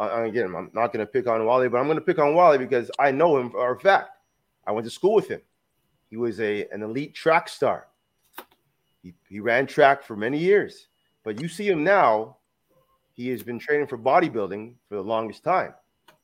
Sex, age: male, 30-49